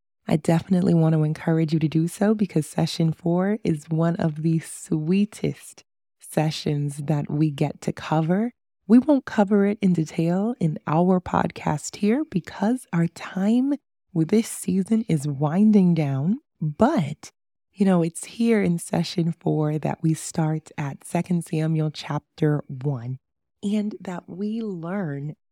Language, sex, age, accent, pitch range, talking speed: English, female, 20-39, American, 155-190 Hz, 145 wpm